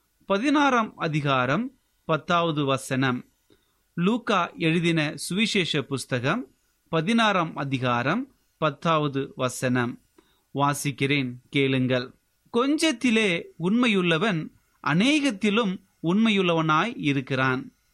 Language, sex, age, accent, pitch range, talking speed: Tamil, male, 30-49, native, 150-210 Hz, 65 wpm